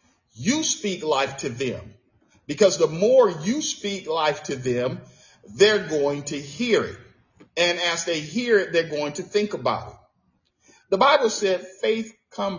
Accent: American